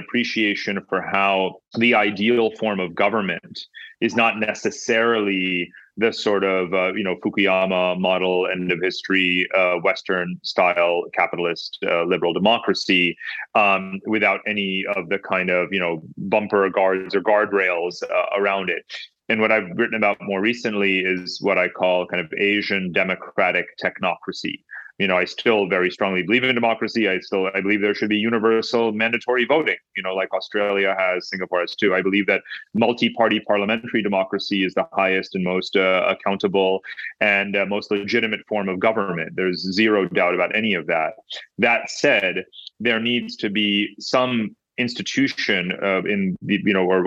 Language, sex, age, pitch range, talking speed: English, male, 30-49, 95-110 Hz, 165 wpm